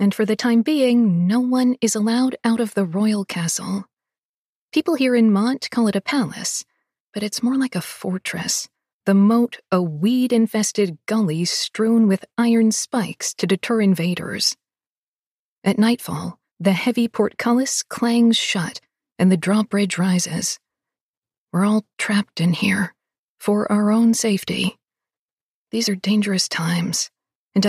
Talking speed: 140 wpm